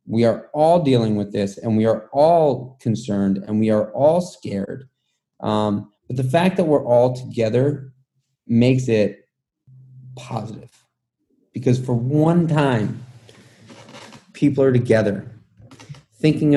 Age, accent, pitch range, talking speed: 30-49, American, 110-140 Hz, 125 wpm